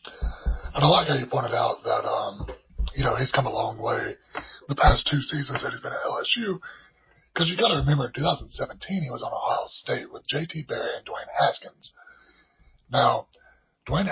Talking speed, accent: 190 wpm, American